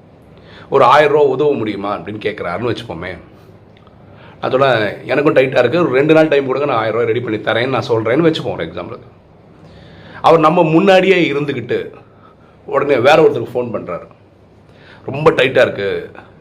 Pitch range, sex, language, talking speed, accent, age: 105-155 Hz, male, Tamil, 140 wpm, native, 40-59